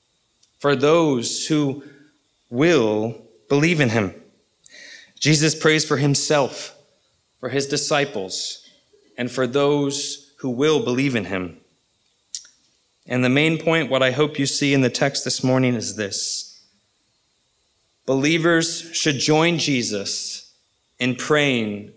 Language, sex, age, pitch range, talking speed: English, male, 30-49, 120-155 Hz, 120 wpm